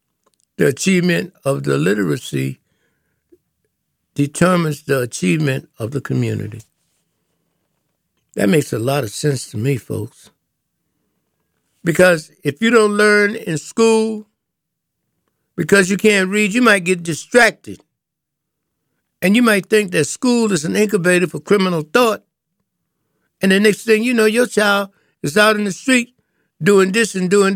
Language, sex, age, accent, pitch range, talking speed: English, male, 60-79, American, 145-205 Hz, 140 wpm